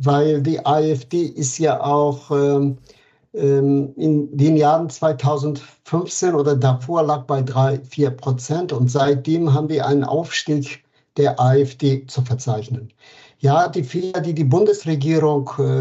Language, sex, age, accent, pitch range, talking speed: German, male, 60-79, German, 135-155 Hz, 130 wpm